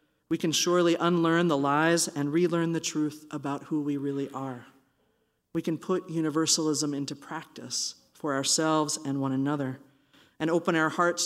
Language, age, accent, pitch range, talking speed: English, 50-69, American, 130-155 Hz, 160 wpm